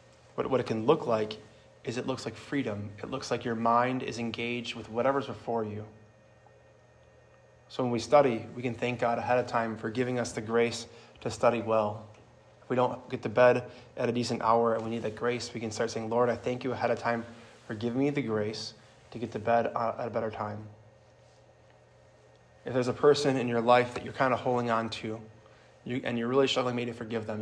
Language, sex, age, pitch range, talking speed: English, male, 20-39, 110-125 Hz, 220 wpm